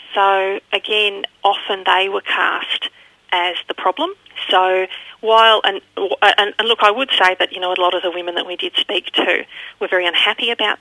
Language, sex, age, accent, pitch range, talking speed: English, female, 40-59, Australian, 180-225 Hz, 190 wpm